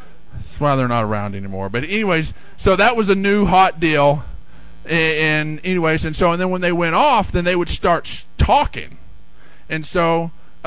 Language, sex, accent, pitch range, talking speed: English, male, American, 150-195 Hz, 185 wpm